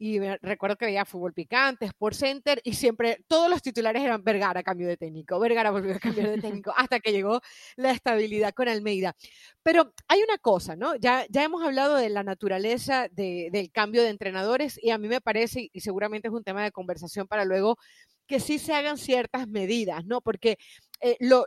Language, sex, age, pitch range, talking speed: Spanish, female, 30-49, 215-270 Hz, 205 wpm